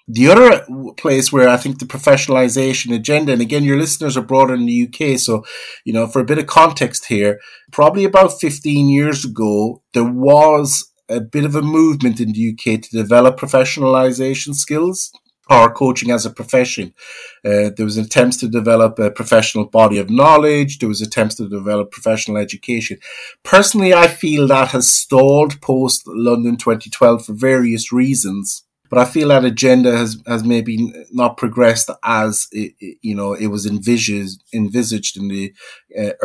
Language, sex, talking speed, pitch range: English, male, 170 wpm, 110-140 Hz